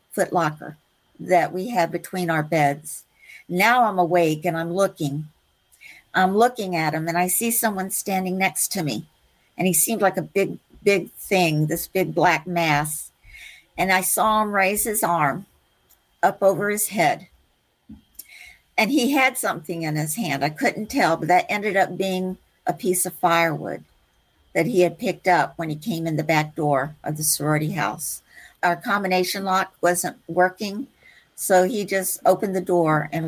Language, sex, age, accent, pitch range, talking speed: English, female, 50-69, American, 155-190 Hz, 170 wpm